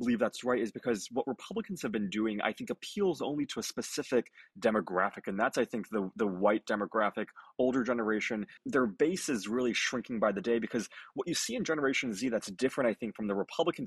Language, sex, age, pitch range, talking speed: English, male, 20-39, 105-135 Hz, 215 wpm